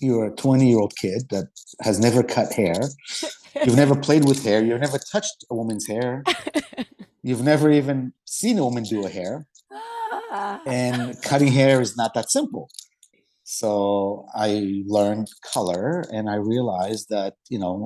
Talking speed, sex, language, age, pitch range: 155 wpm, male, English, 50-69, 105-135 Hz